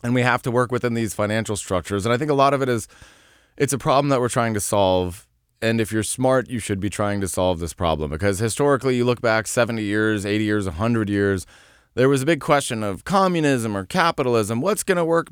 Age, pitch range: 20-39, 95-125 Hz